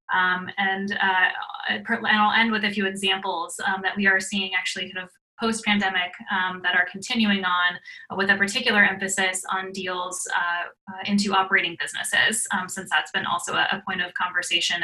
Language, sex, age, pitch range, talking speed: English, female, 20-39, 185-205 Hz, 180 wpm